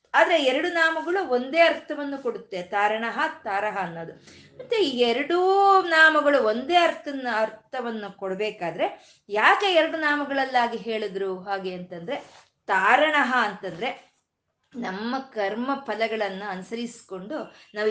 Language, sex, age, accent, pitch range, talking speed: Kannada, female, 20-39, native, 210-290 Hz, 95 wpm